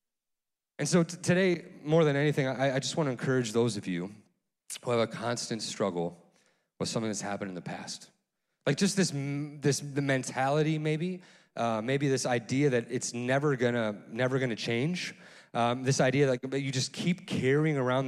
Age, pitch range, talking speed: 30-49, 105-145 Hz, 190 wpm